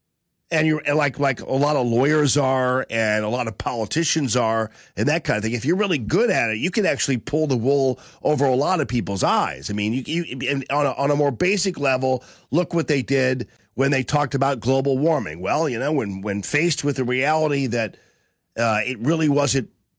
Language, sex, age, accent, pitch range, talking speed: English, male, 40-59, American, 125-160 Hz, 225 wpm